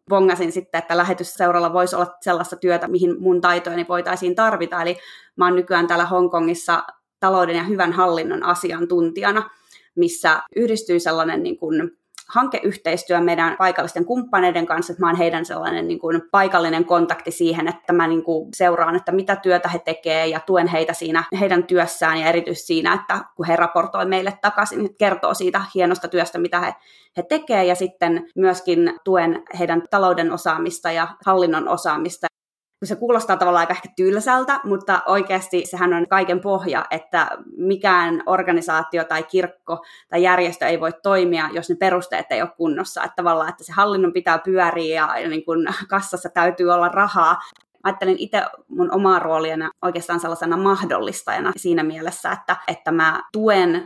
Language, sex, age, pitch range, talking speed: Finnish, female, 20-39, 170-185 Hz, 160 wpm